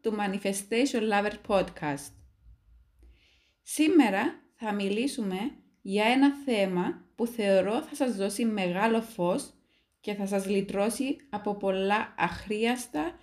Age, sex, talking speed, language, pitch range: 20-39, female, 110 wpm, Greek, 155-250 Hz